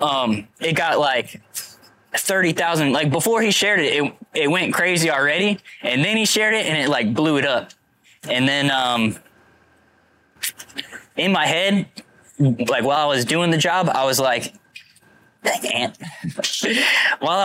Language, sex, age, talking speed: English, male, 10-29, 155 wpm